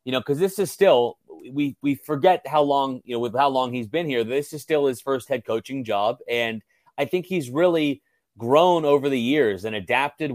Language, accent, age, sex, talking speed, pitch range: English, American, 30-49, male, 220 wpm, 115-150 Hz